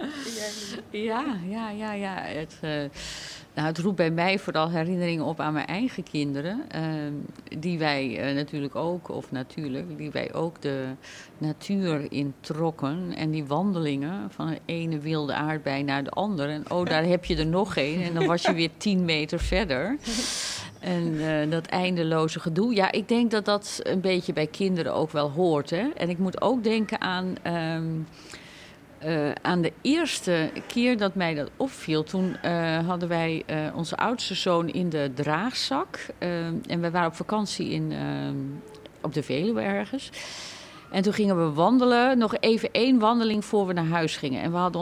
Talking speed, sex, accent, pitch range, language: 170 wpm, female, Dutch, 155-195 Hz, Dutch